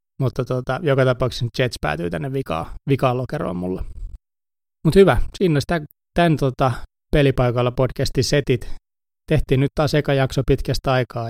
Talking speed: 150 wpm